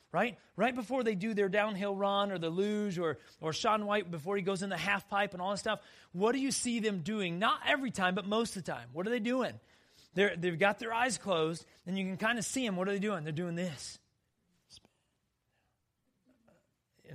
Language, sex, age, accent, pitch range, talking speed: English, male, 30-49, American, 185-245 Hz, 230 wpm